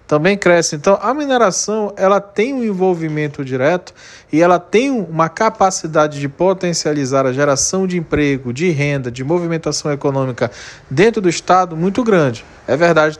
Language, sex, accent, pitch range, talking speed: English, male, Brazilian, 140-190 Hz, 150 wpm